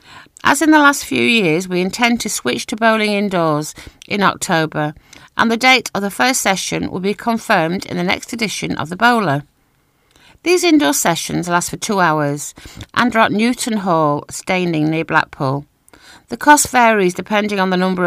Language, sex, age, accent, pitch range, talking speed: English, female, 50-69, British, 160-230 Hz, 180 wpm